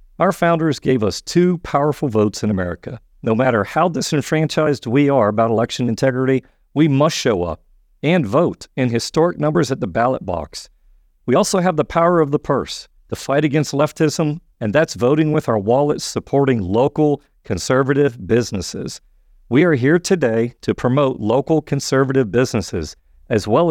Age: 50-69